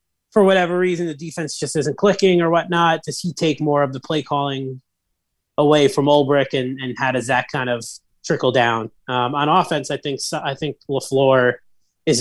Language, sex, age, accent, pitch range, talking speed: English, male, 30-49, American, 130-155 Hz, 190 wpm